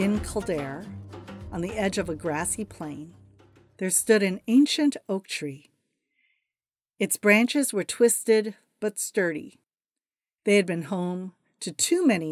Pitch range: 165-225 Hz